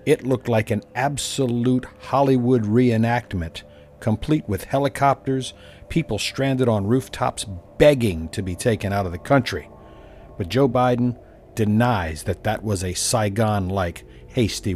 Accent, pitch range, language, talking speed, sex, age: American, 95-125 Hz, English, 135 wpm, male, 50-69